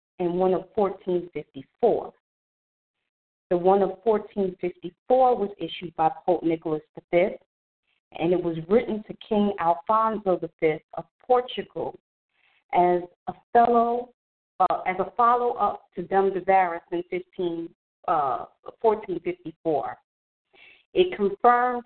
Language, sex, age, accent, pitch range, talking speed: English, female, 40-59, American, 180-220 Hz, 105 wpm